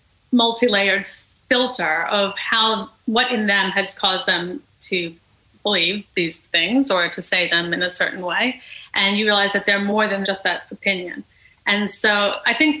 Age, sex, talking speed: 30-49, female, 170 wpm